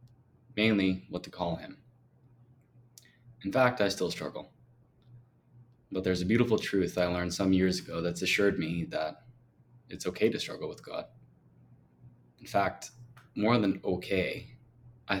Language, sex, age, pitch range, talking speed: English, male, 20-39, 95-125 Hz, 140 wpm